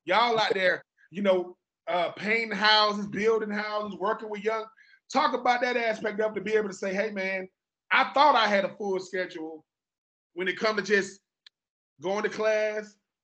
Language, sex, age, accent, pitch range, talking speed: English, male, 20-39, American, 195-230 Hz, 185 wpm